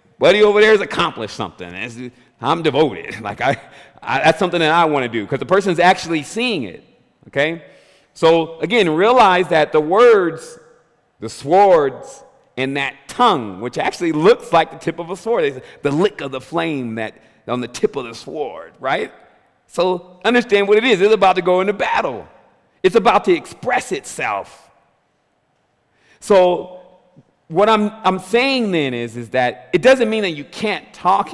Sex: male